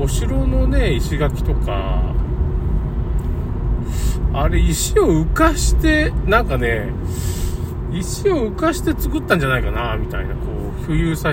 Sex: male